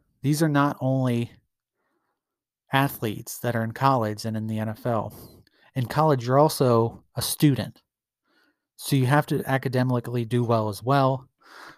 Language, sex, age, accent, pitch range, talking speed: English, male, 30-49, American, 115-130 Hz, 145 wpm